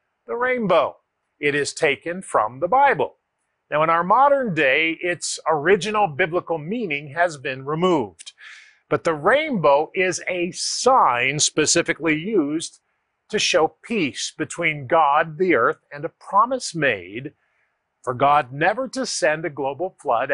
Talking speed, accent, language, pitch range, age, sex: 140 wpm, American, English, 140-180 Hz, 40-59, male